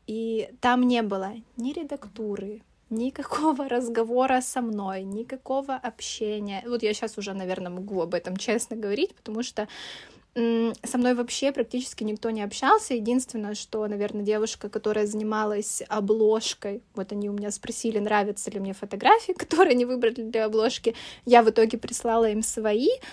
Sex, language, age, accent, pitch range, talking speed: female, Russian, 20-39, native, 215-255 Hz, 150 wpm